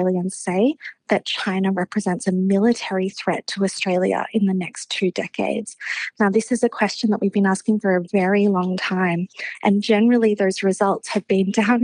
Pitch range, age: 195-230 Hz, 20-39